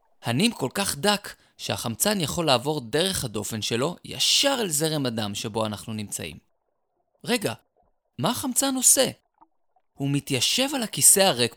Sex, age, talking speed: male, 20-39, 135 wpm